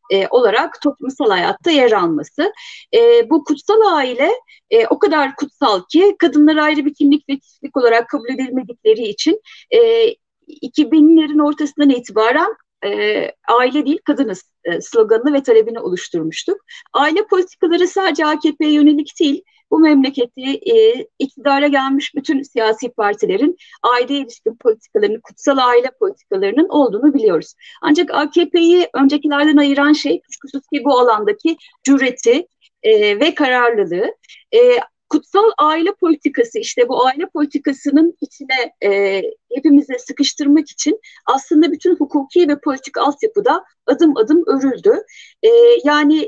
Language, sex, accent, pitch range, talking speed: Turkish, female, native, 275-400 Hz, 125 wpm